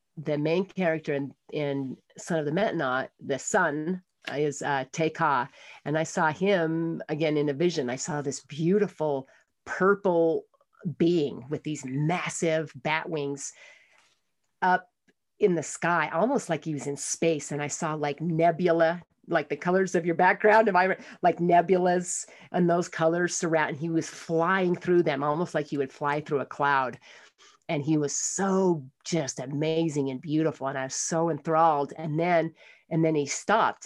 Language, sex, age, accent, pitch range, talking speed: English, female, 40-59, American, 145-170 Hz, 170 wpm